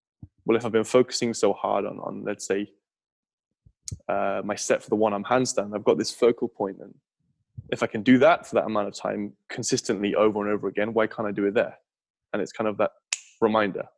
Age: 10-29